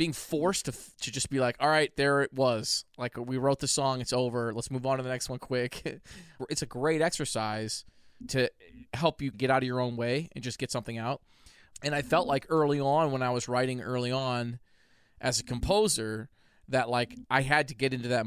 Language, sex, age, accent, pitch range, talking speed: English, male, 20-39, American, 120-140 Hz, 225 wpm